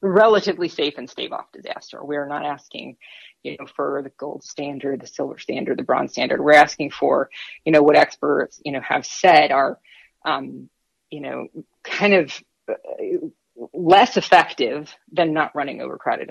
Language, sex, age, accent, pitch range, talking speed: English, female, 30-49, American, 150-175 Hz, 160 wpm